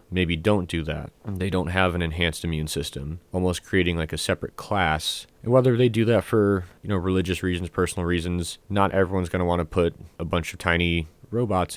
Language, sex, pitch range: English, male, 85-100 Hz